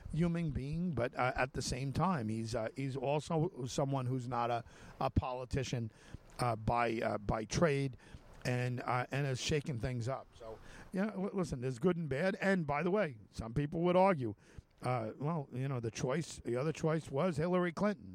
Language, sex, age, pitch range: English, male, 50-69, 115-155 Hz